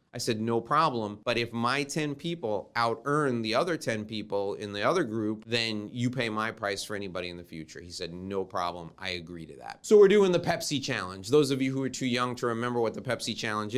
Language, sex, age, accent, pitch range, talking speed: English, male, 30-49, American, 105-135 Hz, 240 wpm